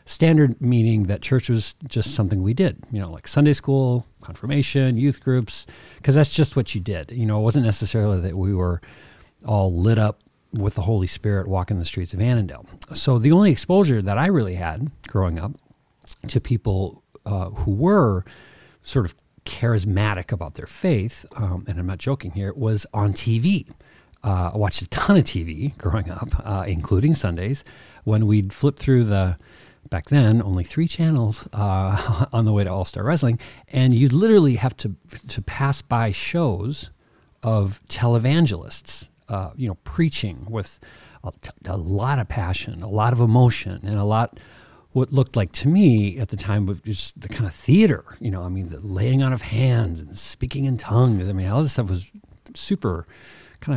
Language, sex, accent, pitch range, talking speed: English, male, American, 100-130 Hz, 185 wpm